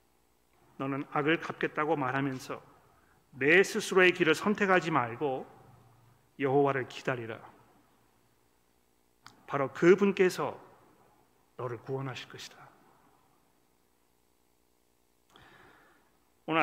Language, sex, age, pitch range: Korean, male, 40-59, 125-165 Hz